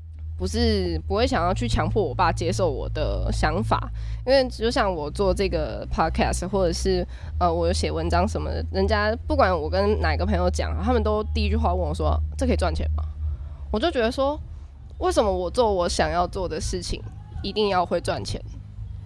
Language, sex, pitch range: Chinese, female, 75-110 Hz